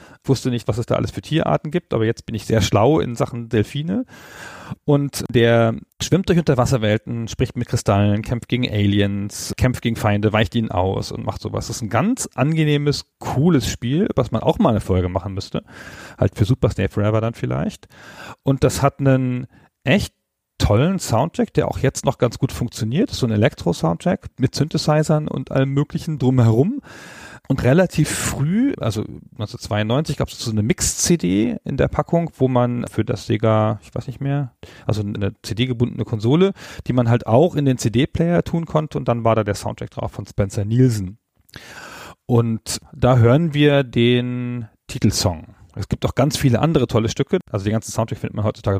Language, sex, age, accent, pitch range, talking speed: German, male, 40-59, German, 110-140 Hz, 185 wpm